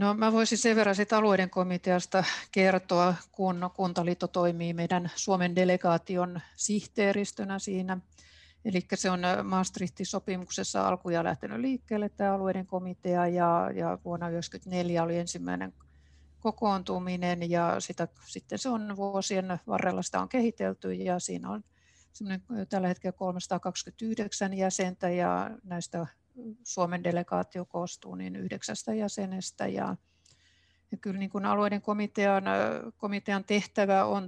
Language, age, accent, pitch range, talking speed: Finnish, 60-79, native, 165-195 Hz, 115 wpm